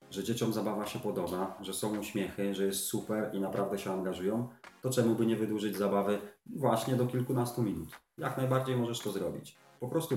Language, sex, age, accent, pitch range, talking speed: Polish, male, 30-49, native, 100-130 Hz, 190 wpm